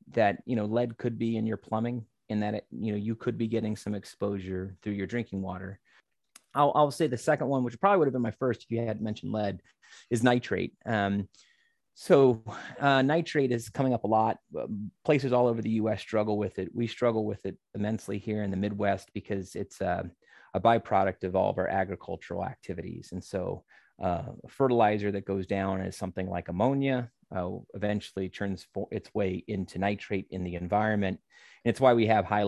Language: English